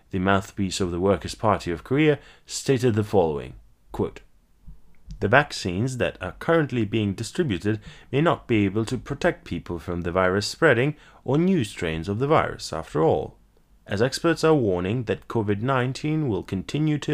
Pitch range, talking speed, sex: 95-135 Hz, 160 wpm, male